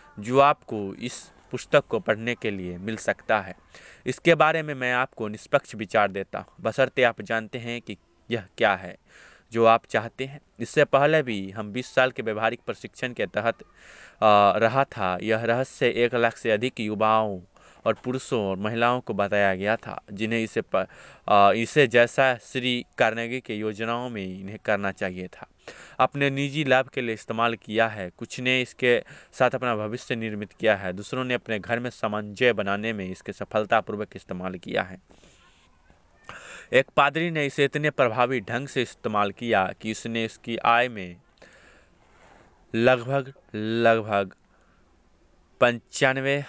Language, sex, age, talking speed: Hindi, male, 20-39, 155 wpm